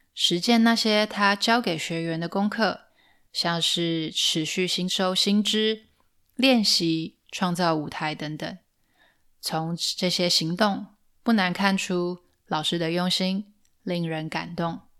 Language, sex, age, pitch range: Chinese, female, 10-29, 165-210 Hz